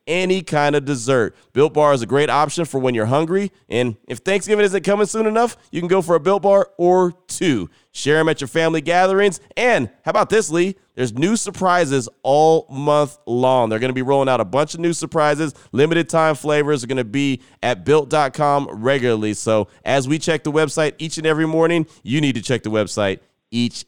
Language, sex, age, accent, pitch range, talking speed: English, male, 30-49, American, 125-165 Hz, 215 wpm